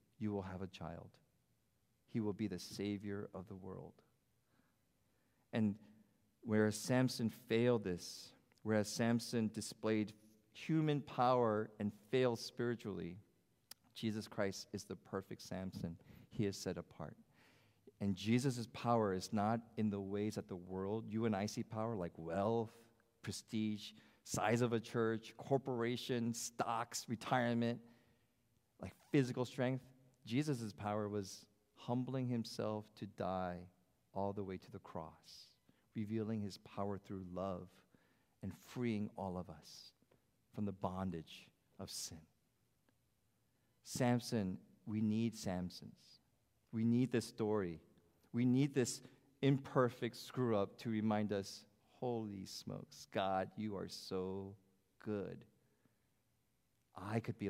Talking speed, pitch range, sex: 125 wpm, 100-120 Hz, male